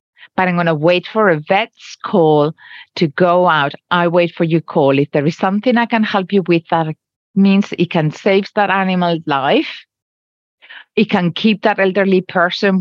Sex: female